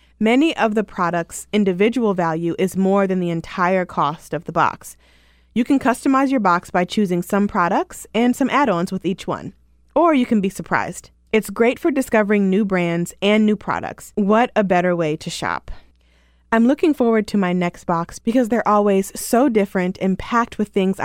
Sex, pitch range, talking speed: female, 175-225 Hz, 190 wpm